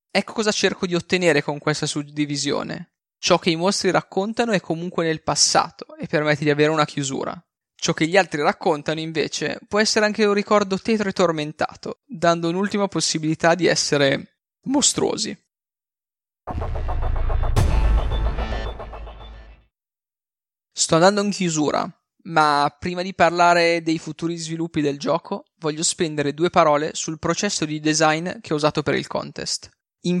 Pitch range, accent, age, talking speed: 150-185 Hz, native, 20-39, 140 wpm